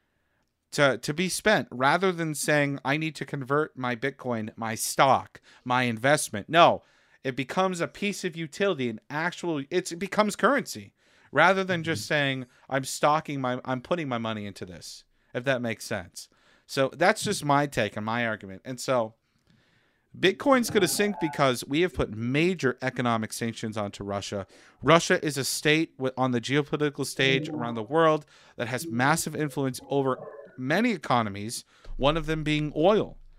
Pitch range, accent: 125-170 Hz, American